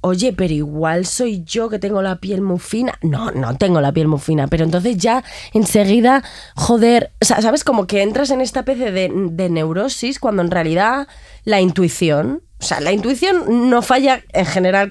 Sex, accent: female, Spanish